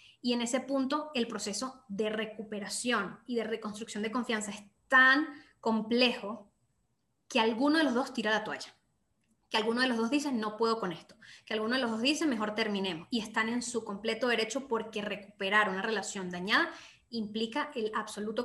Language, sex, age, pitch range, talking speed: Spanish, female, 10-29, 215-260 Hz, 180 wpm